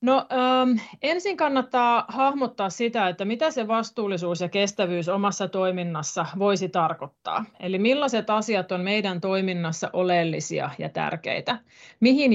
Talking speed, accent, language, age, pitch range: 125 wpm, native, Finnish, 30-49, 175-220 Hz